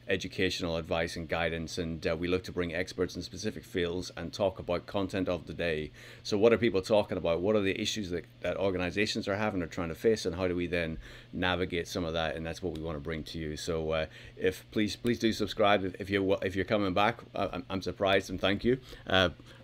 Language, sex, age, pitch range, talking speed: English, male, 30-49, 90-115 Hz, 240 wpm